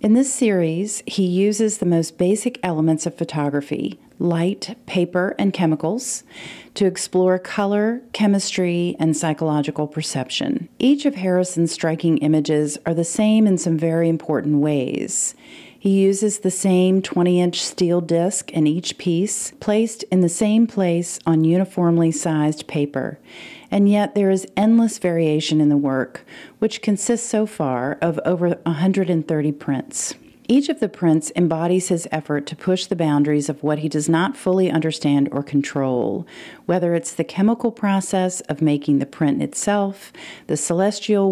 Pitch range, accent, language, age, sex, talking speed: 155-200 Hz, American, English, 40-59, female, 150 wpm